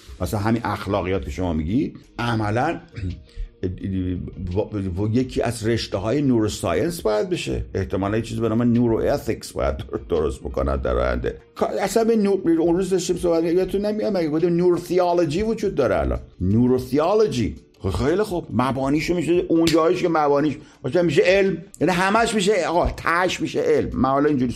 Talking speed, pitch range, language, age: 155 wpm, 110-180 Hz, Persian, 50-69